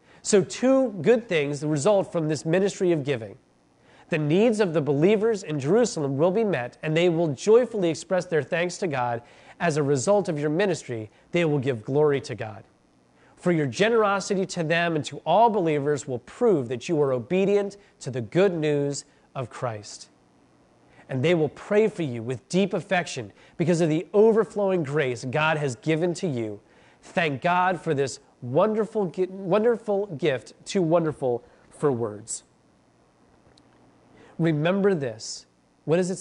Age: 30-49